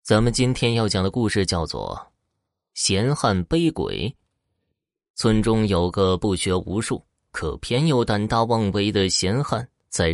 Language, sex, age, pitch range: Chinese, male, 20-39, 95-120 Hz